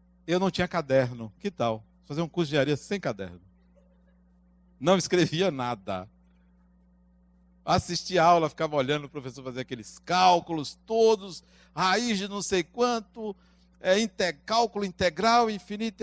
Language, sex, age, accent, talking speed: Portuguese, male, 60-79, Brazilian, 130 wpm